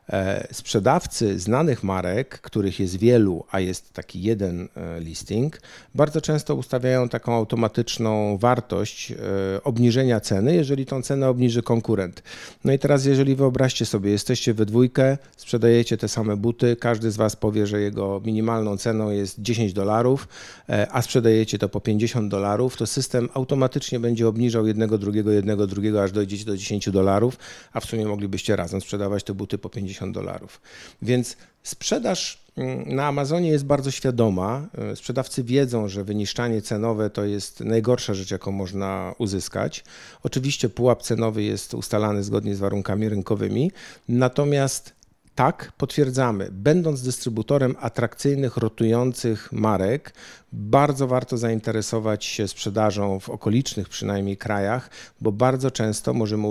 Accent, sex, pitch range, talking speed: native, male, 100-125 Hz, 135 wpm